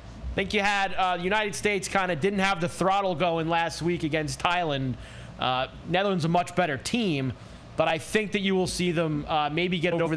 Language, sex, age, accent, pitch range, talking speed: English, male, 30-49, American, 140-205 Hz, 210 wpm